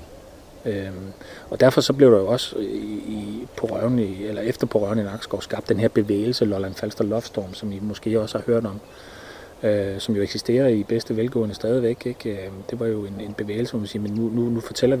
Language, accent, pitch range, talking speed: Danish, native, 105-120 Hz, 230 wpm